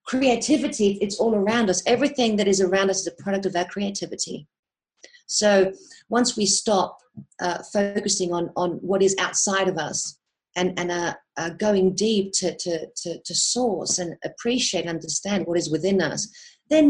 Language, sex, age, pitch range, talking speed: English, female, 40-59, 180-215 Hz, 175 wpm